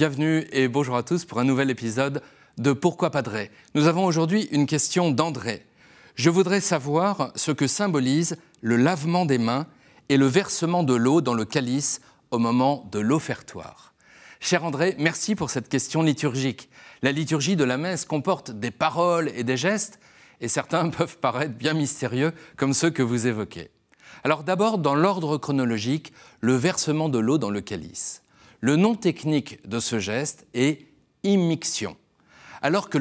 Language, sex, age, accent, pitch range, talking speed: French, male, 40-59, French, 125-165 Hz, 165 wpm